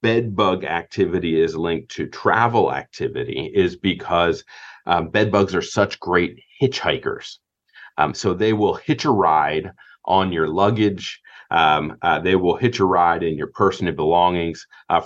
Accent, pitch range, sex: American, 95-120 Hz, male